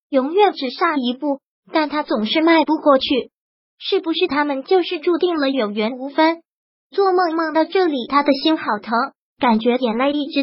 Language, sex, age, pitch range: Chinese, male, 20-39, 265-330 Hz